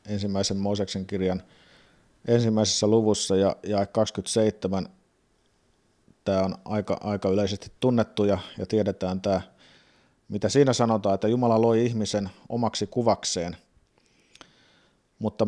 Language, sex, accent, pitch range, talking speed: Finnish, male, native, 100-115 Hz, 110 wpm